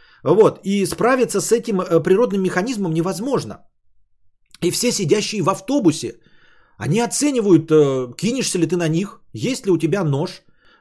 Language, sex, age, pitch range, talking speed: Bulgarian, male, 30-49, 130-215 Hz, 140 wpm